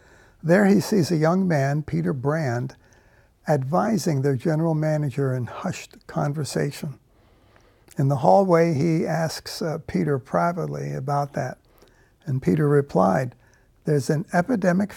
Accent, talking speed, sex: American, 125 wpm, male